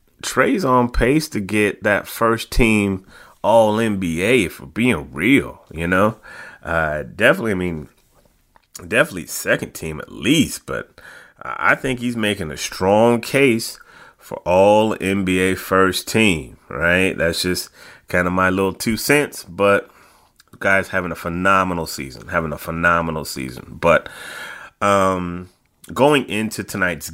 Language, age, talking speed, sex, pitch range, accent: English, 30-49, 130 wpm, male, 85-110 Hz, American